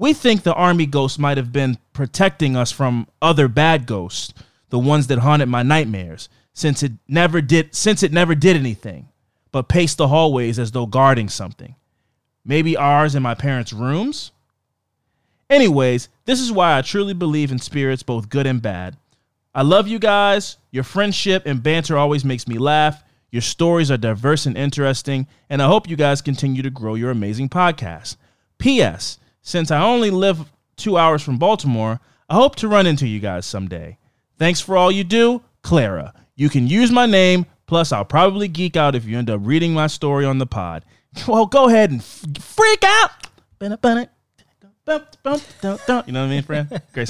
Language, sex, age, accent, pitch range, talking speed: English, male, 30-49, American, 120-175 Hz, 180 wpm